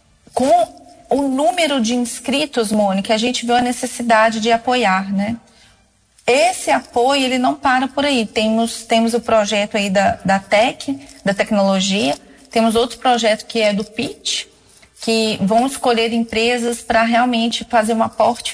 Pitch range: 225-265 Hz